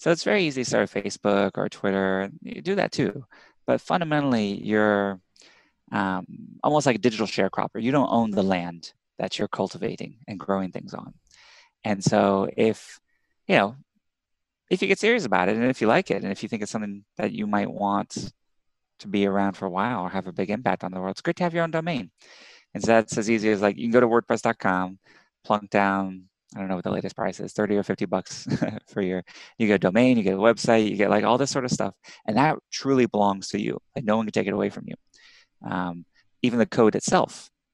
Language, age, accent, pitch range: English, 20-39, American, 95-120 Hz